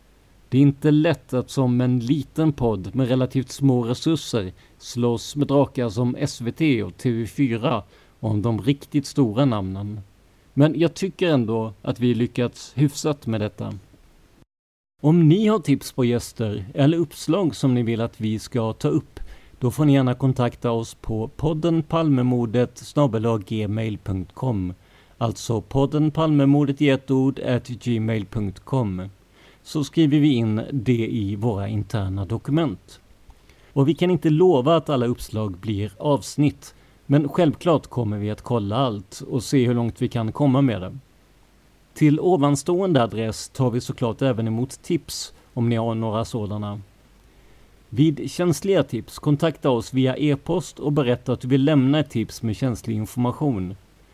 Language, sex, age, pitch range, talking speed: Swedish, male, 50-69, 110-145 Hz, 145 wpm